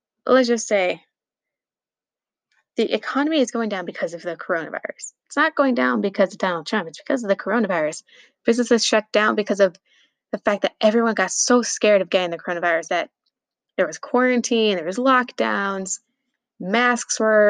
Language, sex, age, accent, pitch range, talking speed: English, female, 20-39, American, 185-230 Hz, 170 wpm